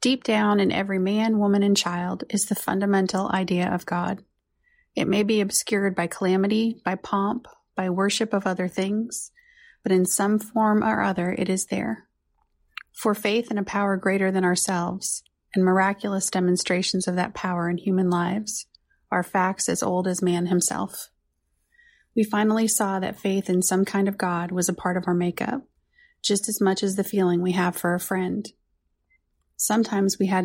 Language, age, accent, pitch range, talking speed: English, 30-49, American, 180-210 Hz, 175 wpm